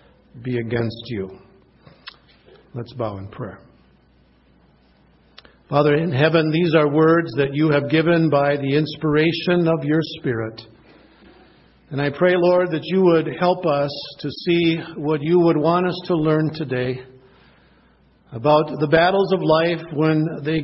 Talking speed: 140 wpm